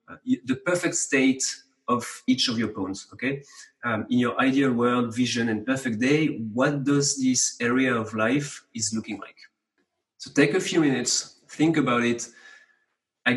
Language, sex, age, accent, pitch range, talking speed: English, male, 30-49, French, 120-150 Hz, 160 wpm